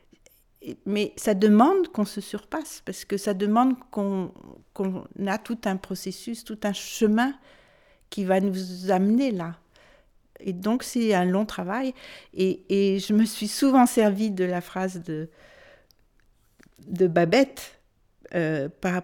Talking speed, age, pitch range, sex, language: 140 wpm, 60-79, 175-210 Hz, female, French